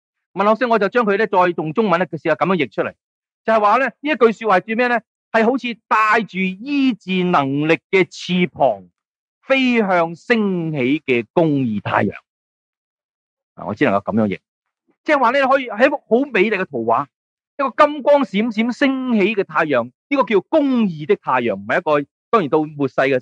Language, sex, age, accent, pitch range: Chinese, male, 30-49, native, 150-230 Hz